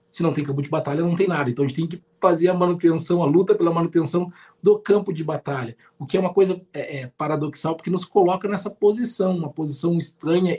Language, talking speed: Portuguese, 220 wpm